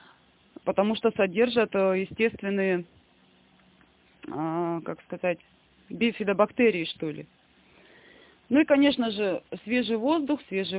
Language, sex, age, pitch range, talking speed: Russian, female, 20-39, 190-250 Hz, 85 wpm